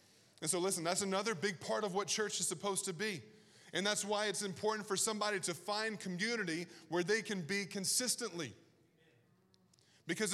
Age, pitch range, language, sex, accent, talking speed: 20-39, 185-230 Hz, English, male, American, 175 wpm